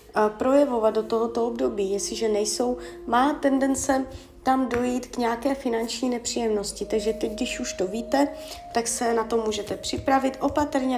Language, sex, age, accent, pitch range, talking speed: Czech, female, 20-39, native, 220-260 Hz, 155 wpm